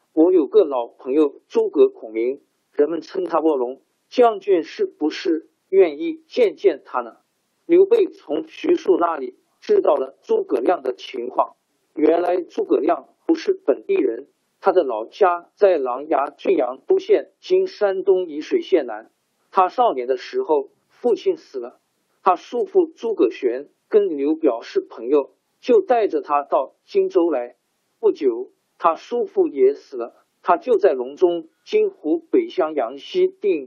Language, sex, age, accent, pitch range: Chinese, male, 50-69, native, 315-400 Hz